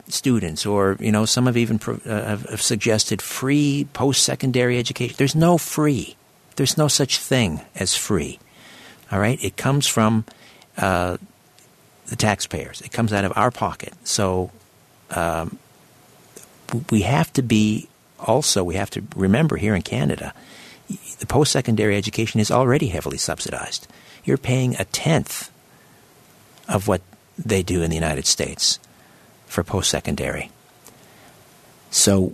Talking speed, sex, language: 135 wpm, male, English